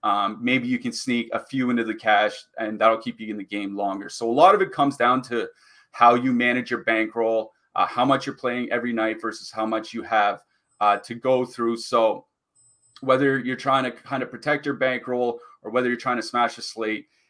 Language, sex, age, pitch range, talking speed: English, male, 30-49, 110-130 Hz, 225 wpm